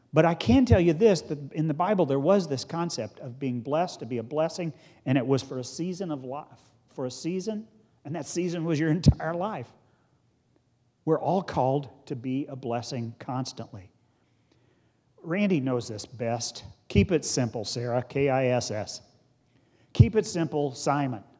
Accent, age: American, 40-59